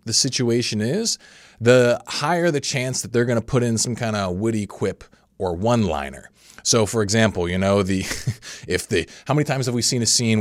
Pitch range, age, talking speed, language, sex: 95-120 Hz, 30-49, 215 wpm, English, male